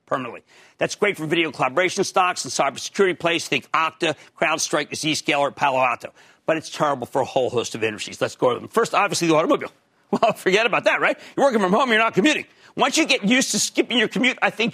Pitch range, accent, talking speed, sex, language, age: 155-215 Hz, American, 220 wpm, male, English, 50-69